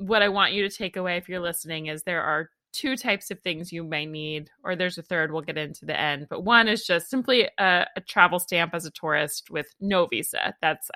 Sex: female